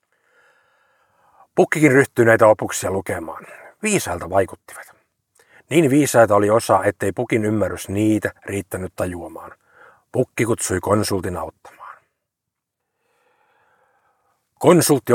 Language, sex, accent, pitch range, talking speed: Finnish, male, native, 100-130 Hz, 85 wpm